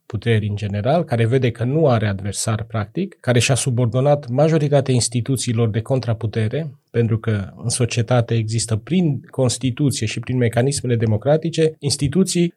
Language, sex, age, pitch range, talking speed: Romanian, male, 30-49, 120-150 Hz, 140 wpm